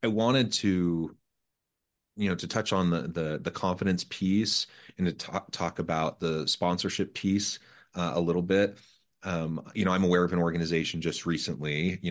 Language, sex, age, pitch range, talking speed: English, male, 30-49, 80-105 Hz, 180 wpm